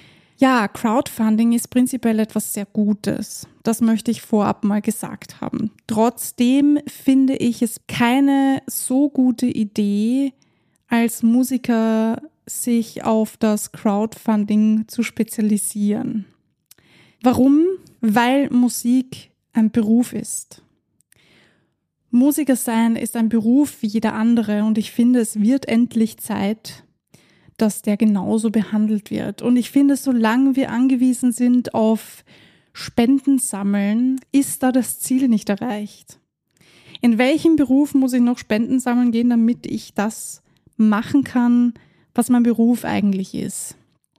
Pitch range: 220-255 Hz